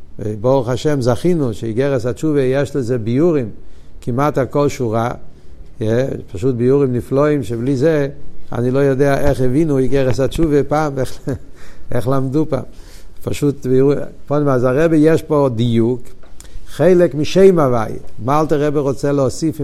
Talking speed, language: 140 wpm, Hebrew